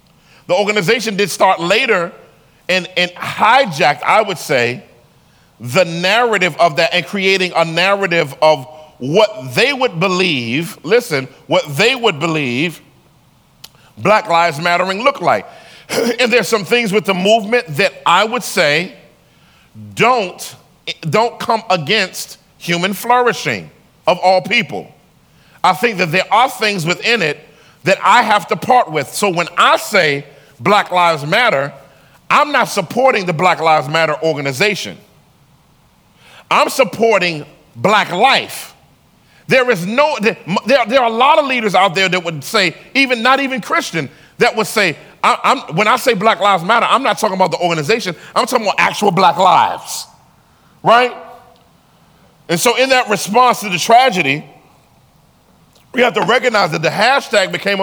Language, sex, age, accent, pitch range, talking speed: English, male, 40-59, American, 170-230 Hz, 150 wpm